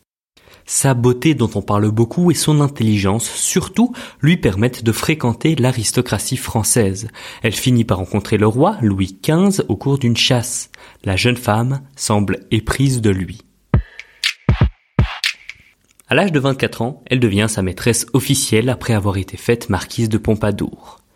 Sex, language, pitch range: male, French, 105-135 Hz